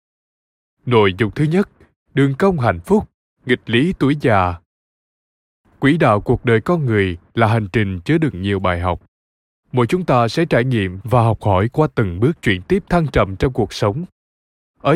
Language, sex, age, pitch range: Vietnamese, male, 20-39, 100-150 Hz